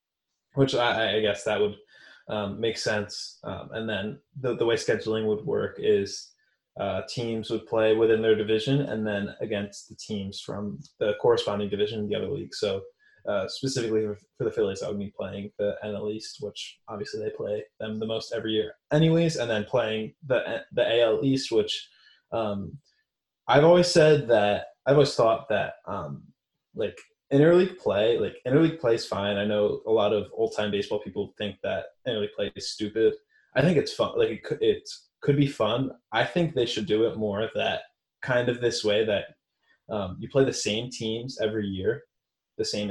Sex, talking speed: male, 195 wpm